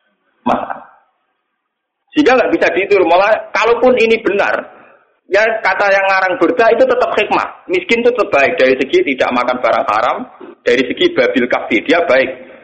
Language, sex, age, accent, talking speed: Indonesian, male, 40-59, native, 150 wpm